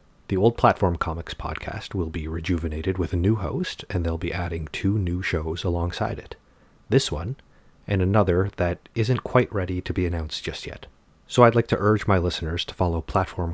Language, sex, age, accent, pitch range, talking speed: English, male, 30-49, American, 85-105 Hz, 195 wpm